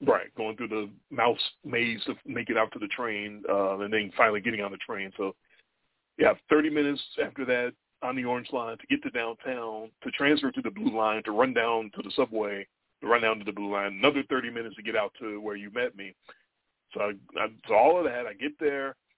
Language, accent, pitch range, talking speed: English, American, 115-170 Hz, 240 wpm